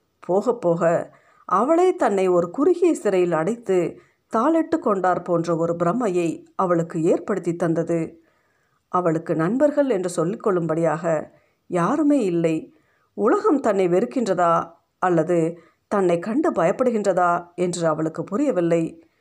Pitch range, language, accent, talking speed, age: 170-230 Hz, Tamil, native, 100 wpm, 50-69